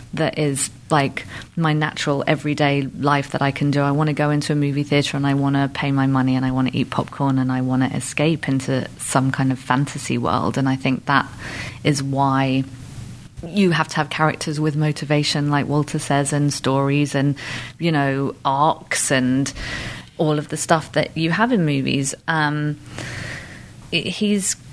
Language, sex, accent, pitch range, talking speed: English, female, British, 140-165 Hz, 185 wpm